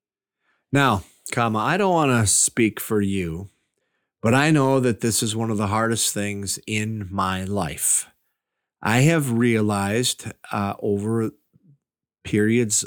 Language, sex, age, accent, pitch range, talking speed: English, male, 40-59, American, 110-140 Hz, 135 wpm